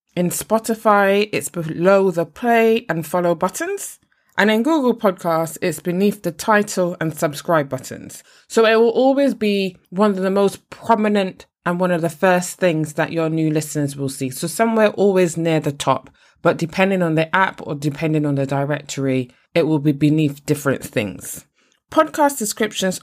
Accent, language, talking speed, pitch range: British, English, 170 wpm, 155-215 Hz